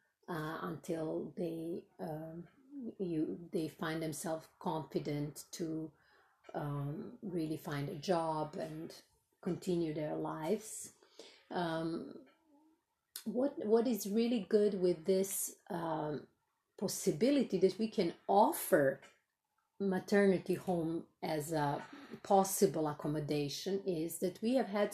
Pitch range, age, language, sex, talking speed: 160-200 Hz, 30-49, English, female, 110 wpm